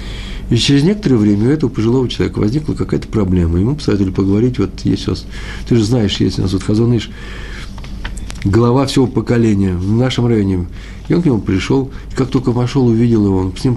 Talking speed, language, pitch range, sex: 200 wpm, Russian, 100-125 Hz, male